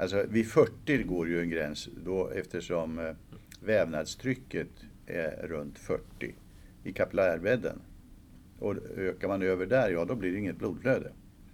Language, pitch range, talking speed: Swedish, 85-100 Hz, 135 wpm